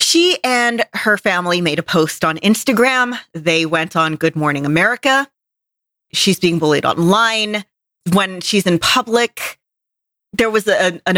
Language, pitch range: English, 160-210 Hz